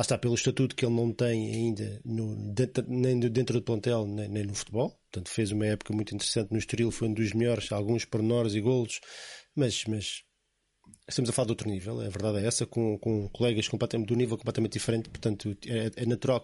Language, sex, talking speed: Portuguese, male, 210 wpm